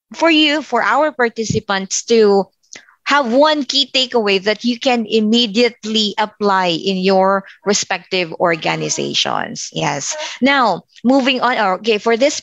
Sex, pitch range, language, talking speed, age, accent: female, 200-270 Hz, Filipino, 125 wpm, 20-39, native